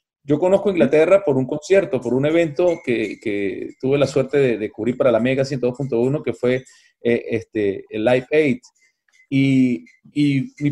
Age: 30-49